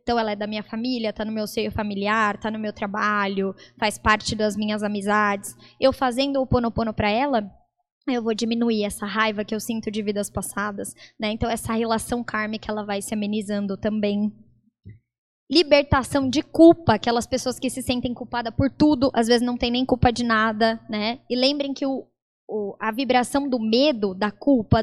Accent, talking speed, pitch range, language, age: Brazilian, 185 wpm, 215-260 Hz, Portuguese, 20-39